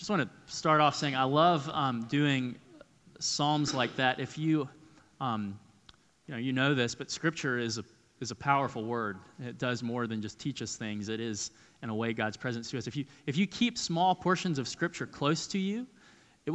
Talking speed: 220 wpm